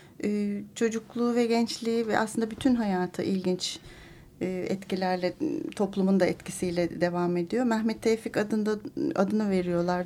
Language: Turkish